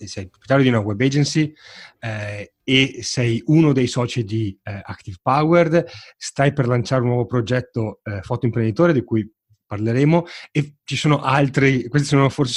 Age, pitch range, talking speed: 30-49, 115-140 Hz, 160 wpm